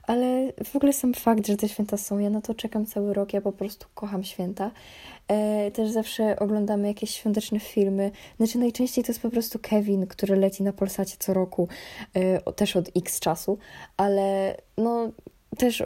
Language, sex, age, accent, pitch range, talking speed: Polish, female, 10-29, native, 185-225 Hz, 185 wpm